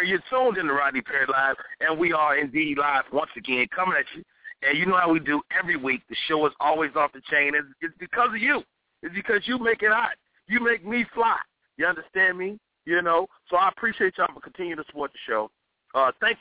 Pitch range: 125-175 Hz